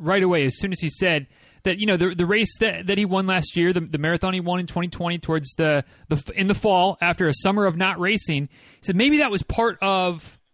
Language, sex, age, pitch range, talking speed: English, male, 30-49, 155-195 Hz, 255 wpm